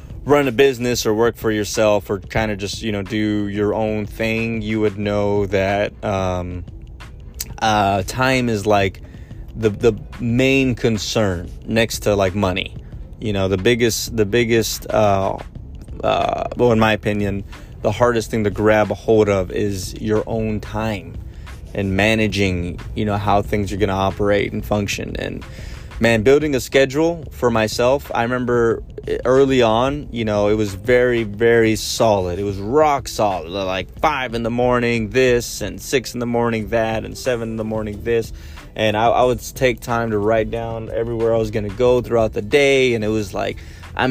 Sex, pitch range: male, 100-120 Hz